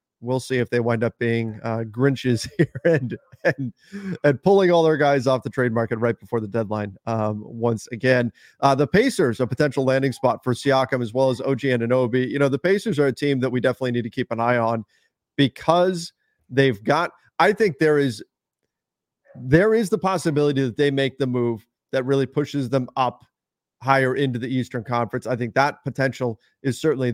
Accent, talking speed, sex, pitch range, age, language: American, 200 wpm, male, 125-155 Hz, 40-59, English